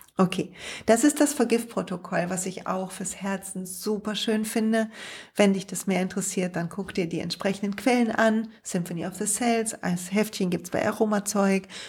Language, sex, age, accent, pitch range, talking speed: German, female, 40-59, German, 170-205 Hz, 175 wpm